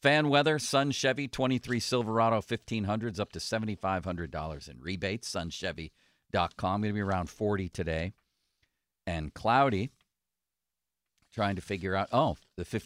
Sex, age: male, 50-69